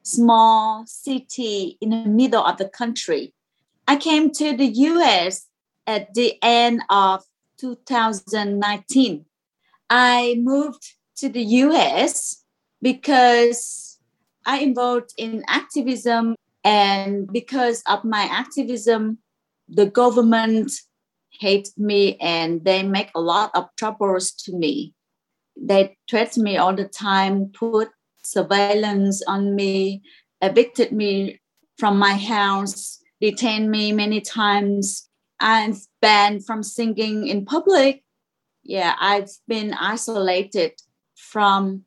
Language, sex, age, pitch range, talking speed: English, female, 30-49, 195-240 Hz, 110 wpm